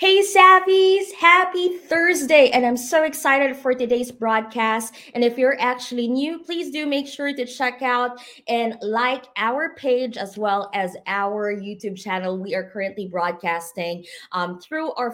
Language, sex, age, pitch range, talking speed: English, female, 20-39, 200-275 Hz, 160 wpm